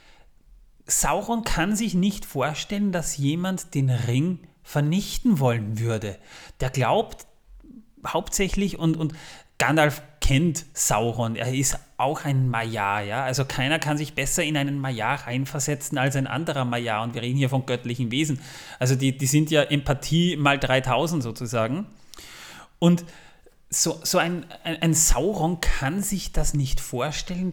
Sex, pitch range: male, 130-165 Hz